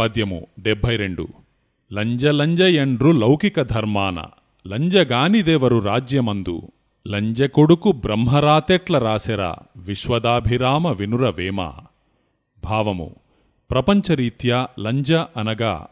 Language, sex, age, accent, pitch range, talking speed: Telugu, male, 30-49, native, 110-140 Hz, 55 wpm